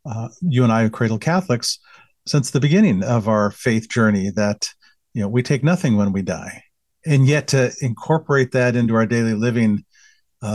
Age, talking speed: 40-59, 190 wpm